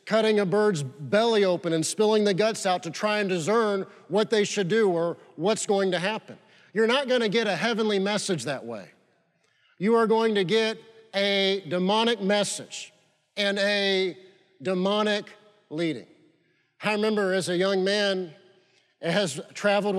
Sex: male